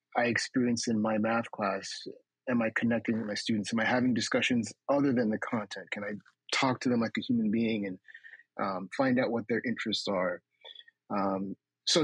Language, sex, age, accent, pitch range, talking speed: English, male, 30-49, American, 110-135 Hz, 195 wpm